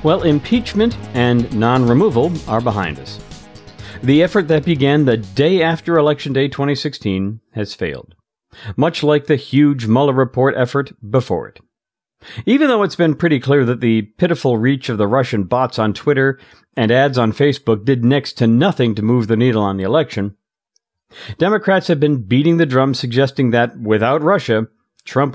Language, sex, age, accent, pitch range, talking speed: English, male, 50-69, American, 115-155 Hz, 165 wpm